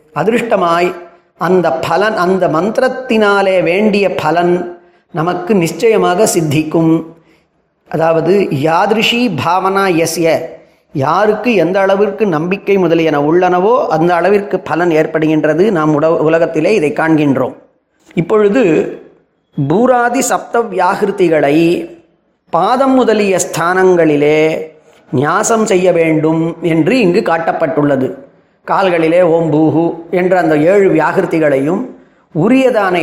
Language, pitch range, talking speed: Tamil, 160-200 Hz, 95 wpm